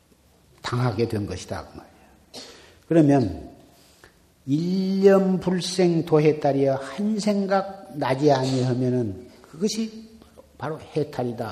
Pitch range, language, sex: 105-145 Hz, Korean, male